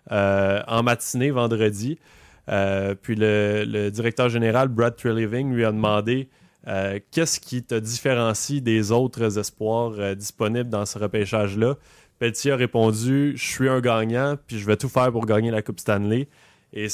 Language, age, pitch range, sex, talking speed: French, 20-39, 105-130 Hz, male, 165 wpm